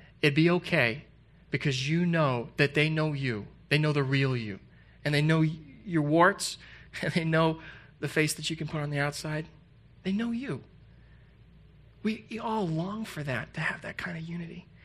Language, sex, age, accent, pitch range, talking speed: English, male, 30-49, American, 145-175 Hz, 185 wpm